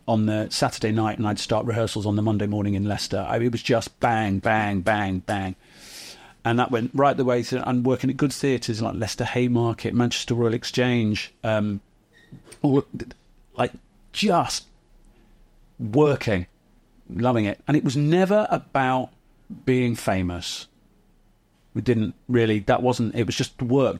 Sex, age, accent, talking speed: male, 40-59, British, 160 wpm